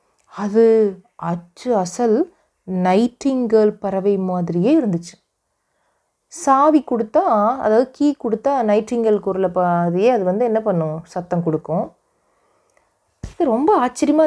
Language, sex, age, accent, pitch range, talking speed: Tamil, female, 30-49, native, 175-230 Hz, 95 wpm